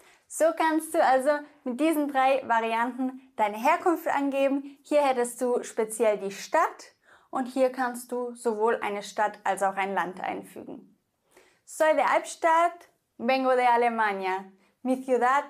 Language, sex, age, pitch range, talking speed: English, female, 20-39, 225-295 Hz, 145 wpm